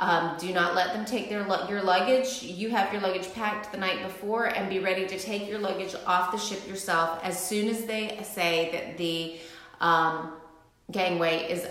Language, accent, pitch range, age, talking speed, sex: English, American, 170-210 Hz, 30-49, 190 wpm, female